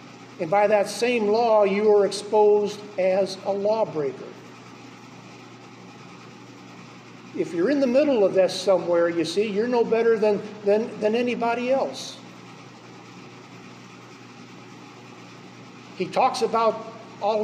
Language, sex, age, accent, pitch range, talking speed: English, male, 50-69, American, 180-215 Hz, 115 wpm